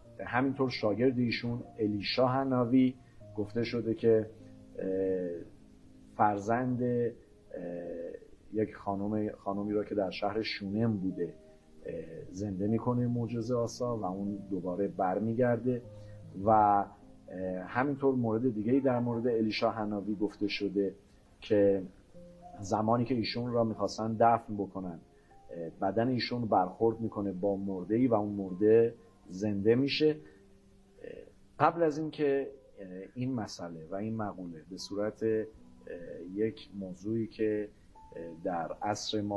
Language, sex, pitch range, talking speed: Persian, male, 95-115 Hz, 105 wpm